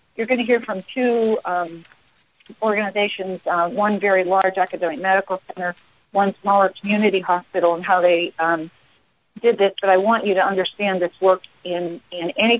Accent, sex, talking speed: American, female, 170 wpm